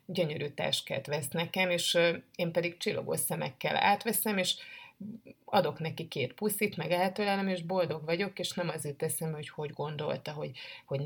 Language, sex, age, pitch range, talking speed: Hungarian, female, 30-49, 160-180 Hz, 155 wpm